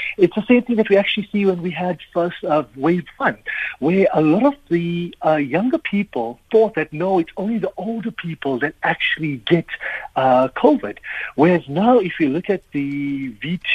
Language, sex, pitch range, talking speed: English, male, 160-225 Hz, 190 wpm